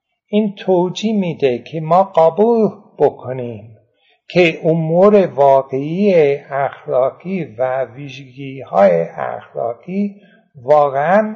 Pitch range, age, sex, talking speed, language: 140-195 Hz, 60-79, male, 80 wpm, Persian